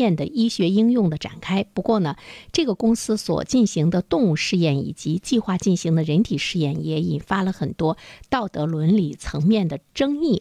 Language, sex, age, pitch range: Chinese, female, 50-69, 160-220 Hz